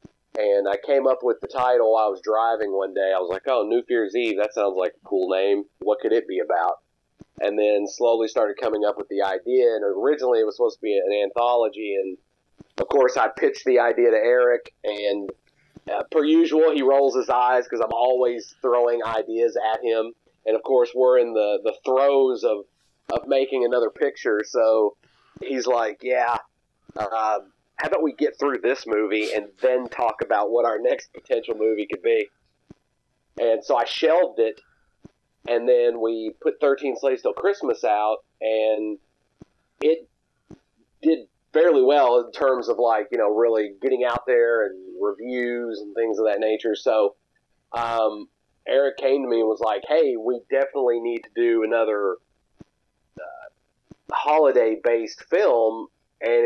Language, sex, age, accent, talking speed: English, male, 30-49, American, 175 wpm